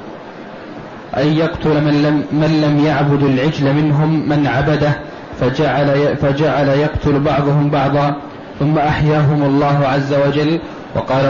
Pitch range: 145-150 Hz